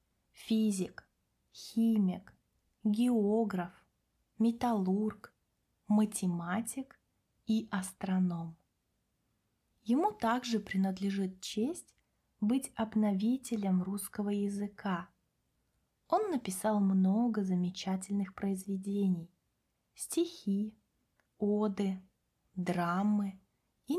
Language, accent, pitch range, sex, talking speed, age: Russian, native, 185-225 Hz, female, 60 wpm, 20-39